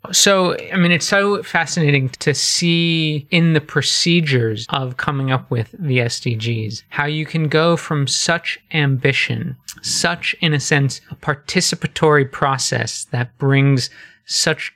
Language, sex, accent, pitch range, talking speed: English, male, American, 125-155 Hz, 140 wpm